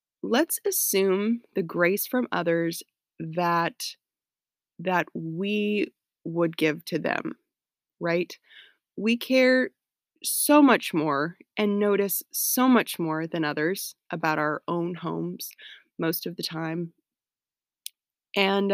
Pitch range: 170-200 Hz